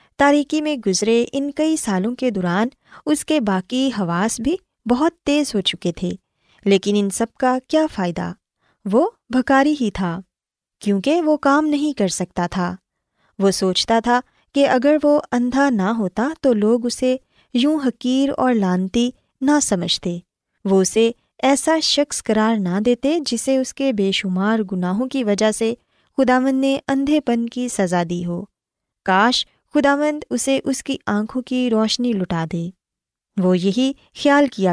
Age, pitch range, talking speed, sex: 20-39, 195-275 Hz, 155 wpm, female